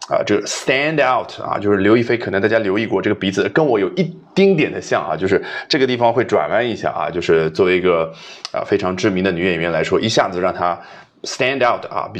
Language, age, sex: Chinese, 30-49, male